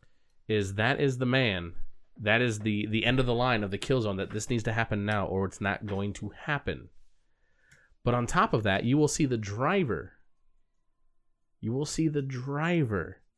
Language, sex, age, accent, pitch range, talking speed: English, male, 30-49, American, 105-140 Hz, 195 wpm